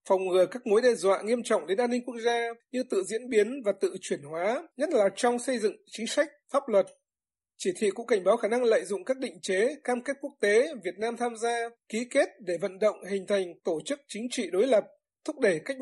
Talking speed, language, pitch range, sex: 250 wpm, Vietnamese, 195-260 Hz, male